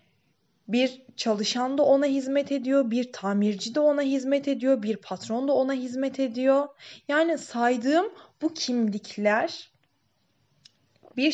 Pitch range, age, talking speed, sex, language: 205-270 Hz, 20-39, 120 wpm, female, Turkish